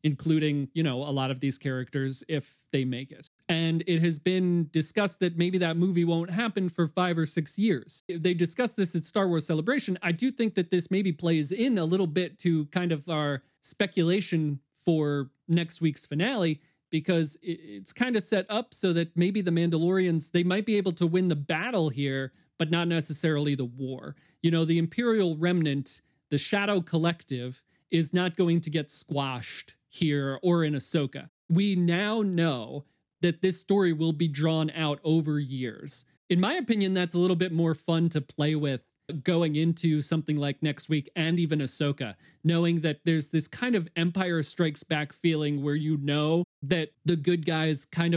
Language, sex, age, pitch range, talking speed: English, male, 40-59, 150-175 Hz, 185 wpm